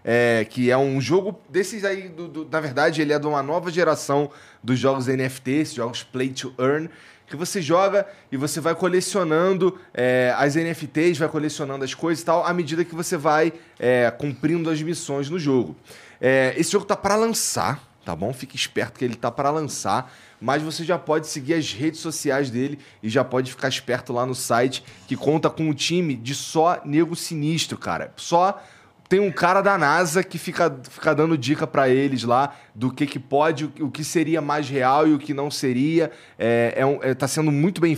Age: 20-39